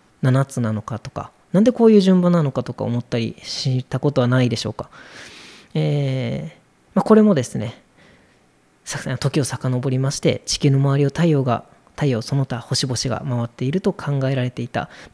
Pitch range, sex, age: 125-170 Hz, female, 20-39